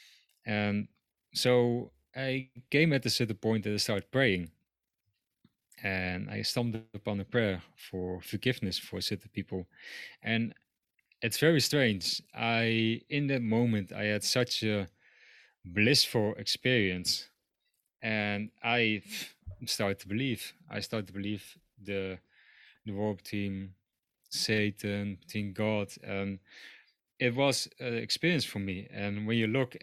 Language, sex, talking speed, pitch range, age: English, male, 130 wpm, 100-115 Hz, 30-49